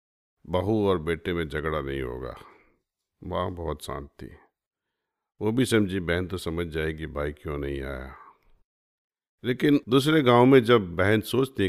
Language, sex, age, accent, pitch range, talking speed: Hindi, male, 50-69, native, 85-110 Hz, 150 wpm